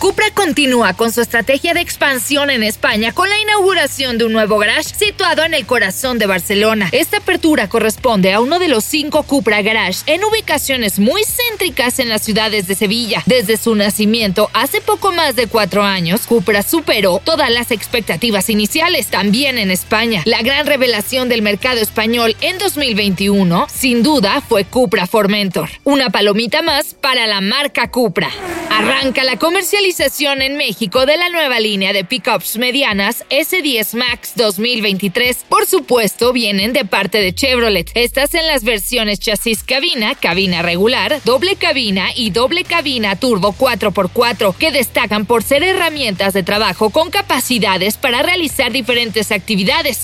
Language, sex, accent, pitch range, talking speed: Spanish, female, Mexican, 215-295 Hz, 155 wpm